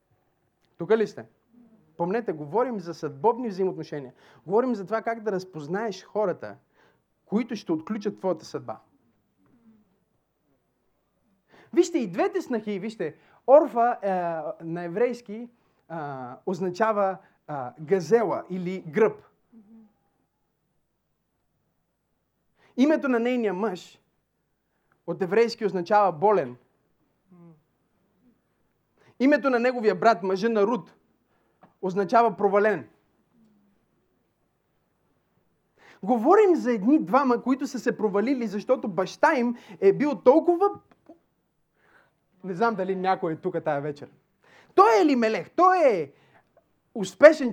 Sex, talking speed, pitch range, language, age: male, 100 wpm, 190-245 Hz, Bulgarian, 30-49